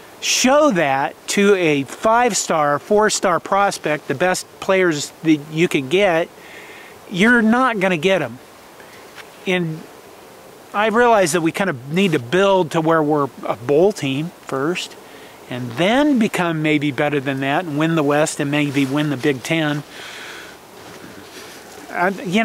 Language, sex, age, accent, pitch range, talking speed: English, male, 40-59, American, 140-175 Hz, 145 wpm